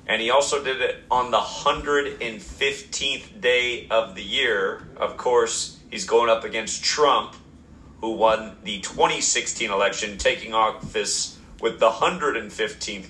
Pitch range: 90-115 Hz